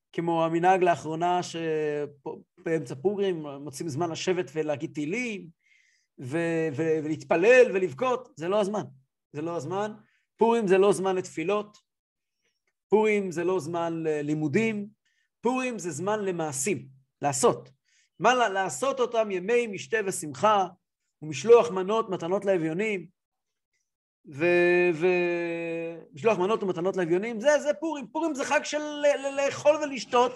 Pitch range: 175-255 Hz